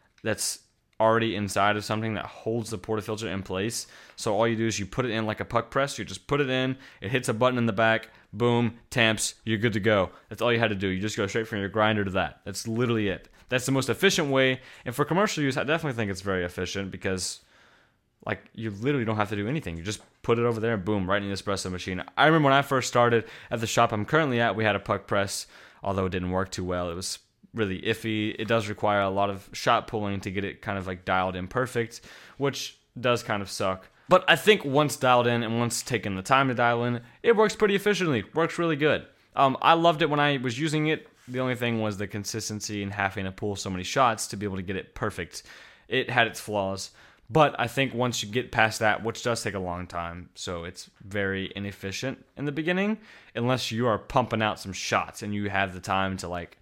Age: 20-39